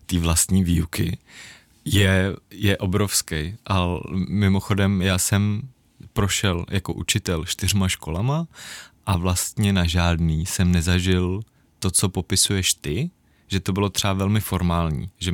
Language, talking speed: Czech, 125 wpm